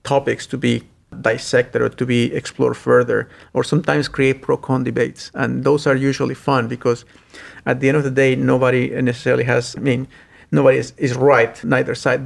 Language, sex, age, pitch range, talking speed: English, male, 50-69, 125-135 Hz, 185 wpm